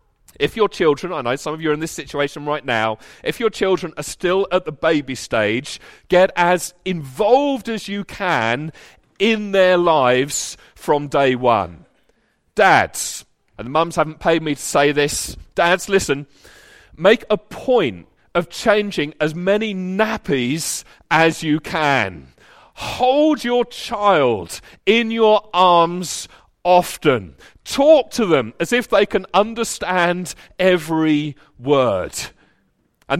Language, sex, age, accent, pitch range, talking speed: English, male, 40-59, British, 150-205 Hz, 135 wpm